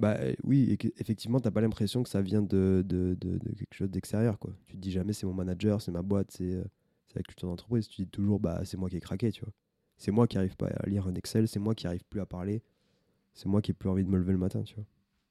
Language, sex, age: French, male, 20-39